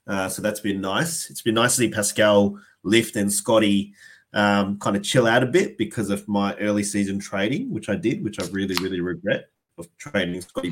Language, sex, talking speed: English, male, 215 wpm